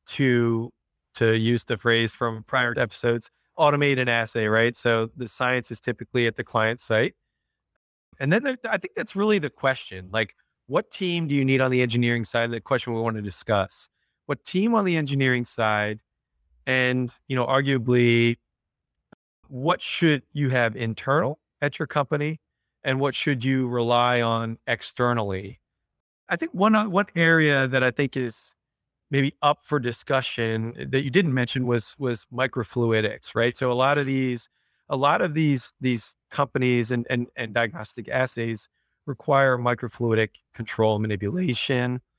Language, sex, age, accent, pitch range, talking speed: English, male, 30-49, American, 115-140 Hz, 160 wpm